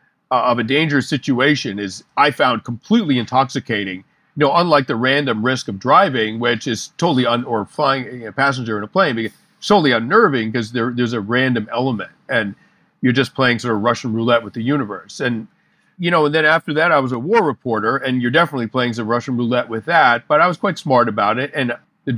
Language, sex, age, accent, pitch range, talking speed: English, male, 40-59, American, 115-150 Hz, 225 wpm